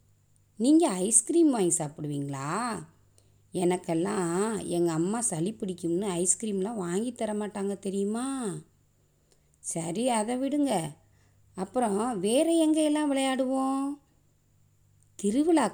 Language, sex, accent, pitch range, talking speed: Tamil, female, native, 140-235 Hz, 75 wpm